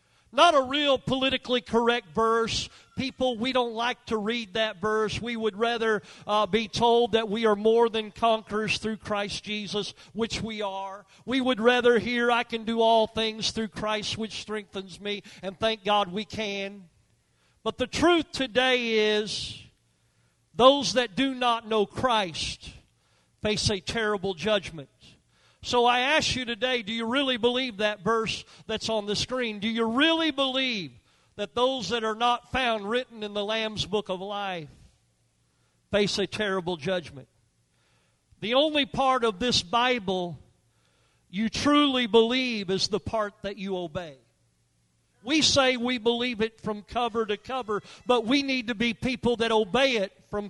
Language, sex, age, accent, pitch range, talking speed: English, male, 40-59, American, 205-245 Hz, 160 wpm